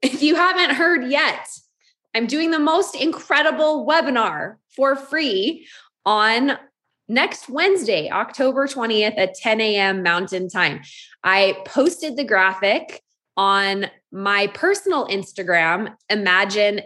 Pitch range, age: 185-265 Hz, 20-39